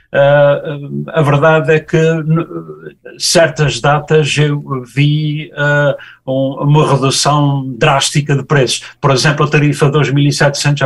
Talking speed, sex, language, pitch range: 125 wpm, male, Portuguese, 125-155 Hz